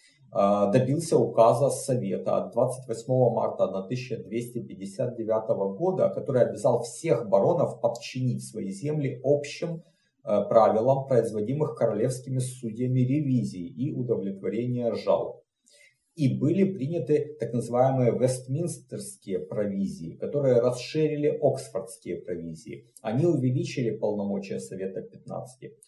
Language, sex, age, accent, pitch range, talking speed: Russian, male, 50-69, native, 115-145 Hz, 95 wpm